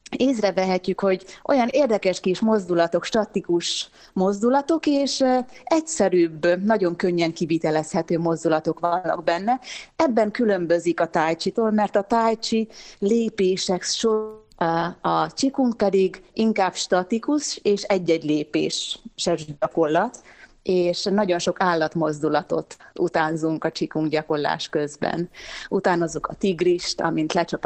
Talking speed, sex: 105 wpm, female